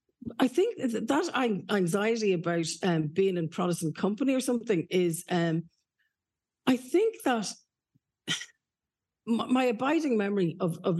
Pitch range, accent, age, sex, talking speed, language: 160-205 Hz, Irish, 50-69, female, 120 wpm, English